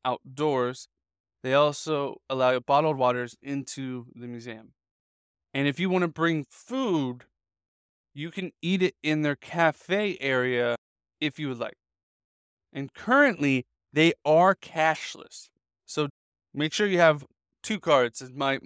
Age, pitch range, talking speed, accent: 20-39, 125-160 Hz, 135 wpm, American